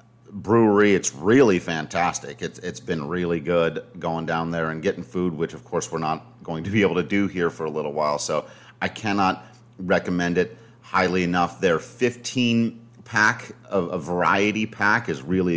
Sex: male